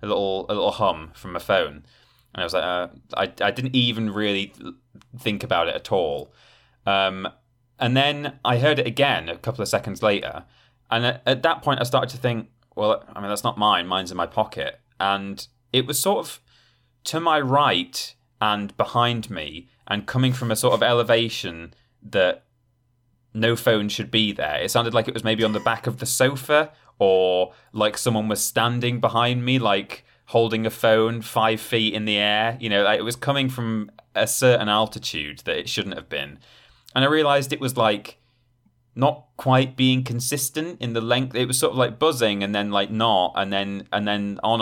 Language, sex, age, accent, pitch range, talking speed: English, male, 20-39, British, 105-130 Hz, 200 wpm